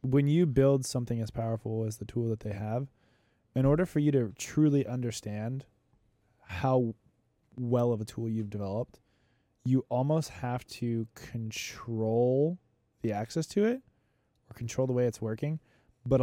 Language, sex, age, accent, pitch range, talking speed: English, male, 20-39, American, 110-130 Hz, 155 wpm